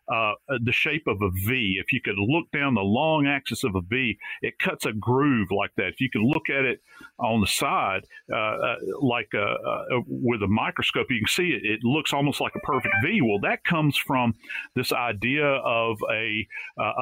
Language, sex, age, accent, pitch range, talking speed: English, male, 50-69, American, 110-145 Hz, 210 wpm